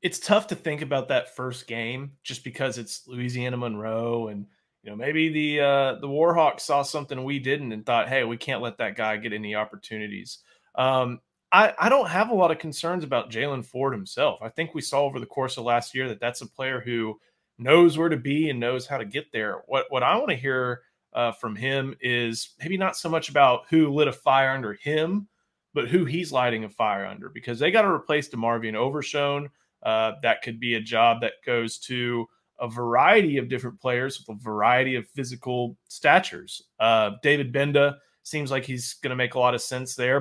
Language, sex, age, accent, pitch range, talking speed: English, male, 30-49, American, 120-145 Hz, 215 wpm